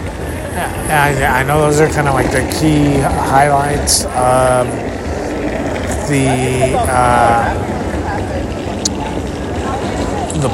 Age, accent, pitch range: 30-49, American, 115-145 Hz